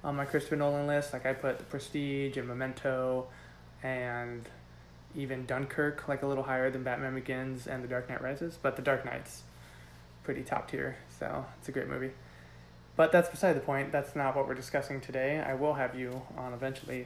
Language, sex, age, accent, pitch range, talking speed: English, male, 20-39, American, 125-140 Hz, 195 wpm